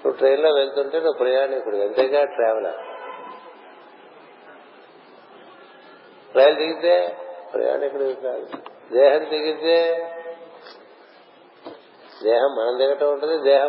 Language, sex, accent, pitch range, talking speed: Telugu, male, native, 130-170 Hz, 80 wpm